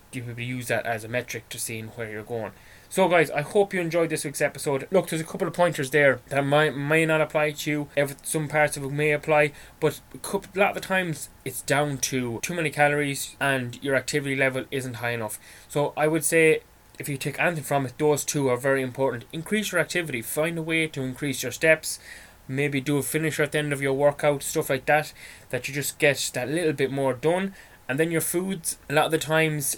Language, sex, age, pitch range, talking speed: English, male, 20-39, 125-155 Hz, 240 wpm